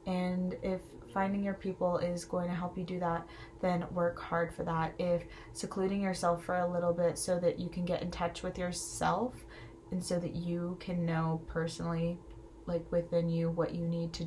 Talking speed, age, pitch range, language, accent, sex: 200 wpm, 20-39, 170-190 Hz, English, American, female